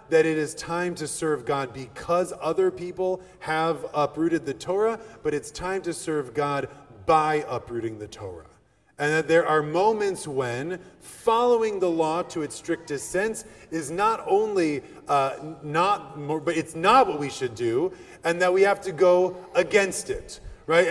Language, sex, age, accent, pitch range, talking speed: English, male, 30-49, American, 155-225 Hz, 170 wpm